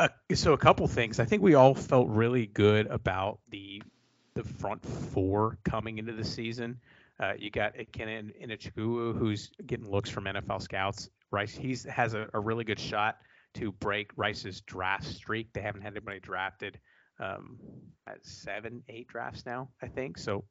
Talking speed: 175 wpm